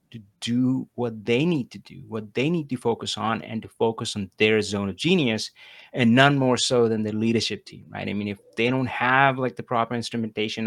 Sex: male